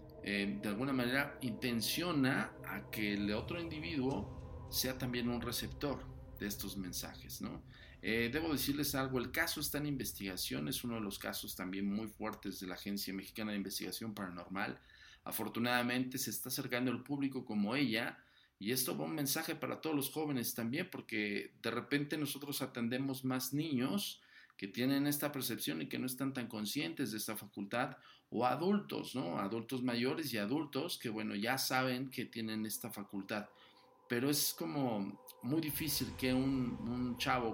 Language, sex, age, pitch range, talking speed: Spanish, male, 50-69, 105-130 Hz, 165 wpm